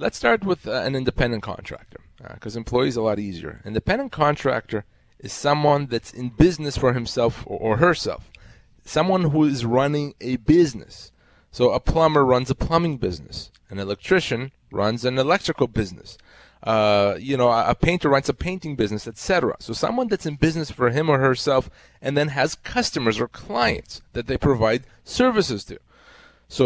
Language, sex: English, male